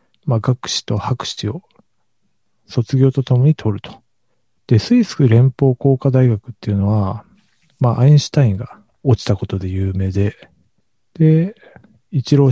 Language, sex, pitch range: Japanese, male, 105-140 Hz